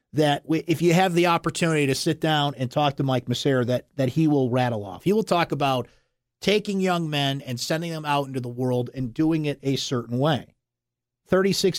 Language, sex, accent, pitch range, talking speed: English, male, American, 125-160 Hz, 210 wpm